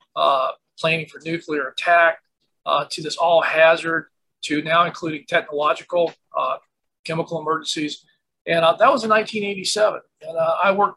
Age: 40-59